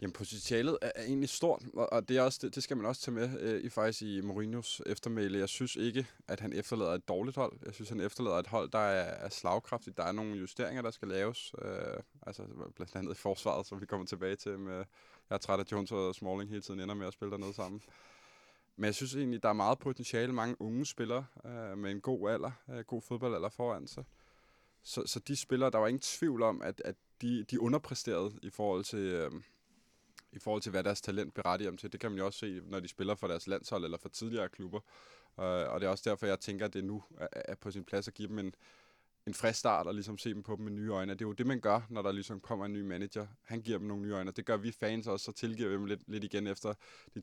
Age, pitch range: 20-39, 100-115 Hz